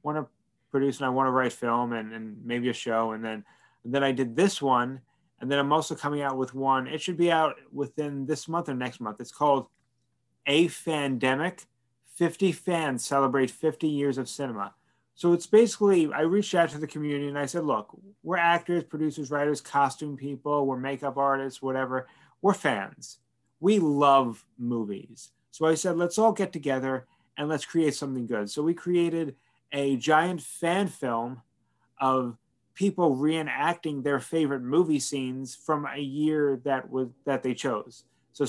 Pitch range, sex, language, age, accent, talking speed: 130-155 Hz, male, English, 30-49, American, 175 wpm